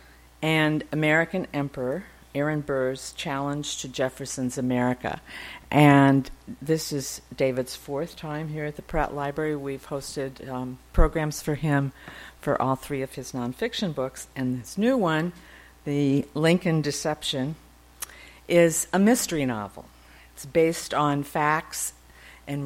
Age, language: 50-69, English